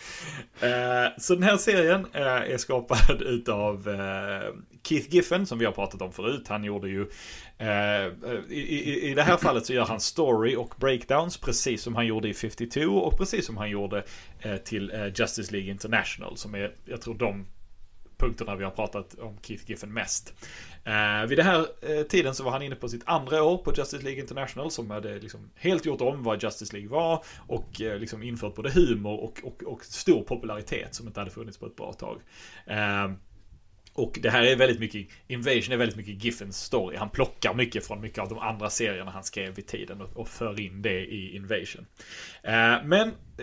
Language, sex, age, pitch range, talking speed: English, male, 30-49, 100-125 Hz, 185 wpm